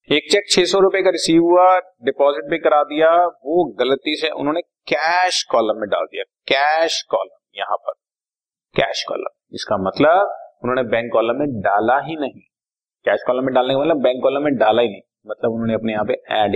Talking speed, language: 190 wpm, Hindi